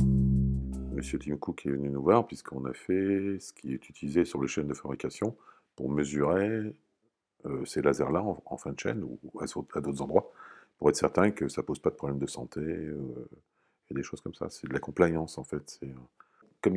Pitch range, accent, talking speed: 70-85 Hz, French, 220 wpm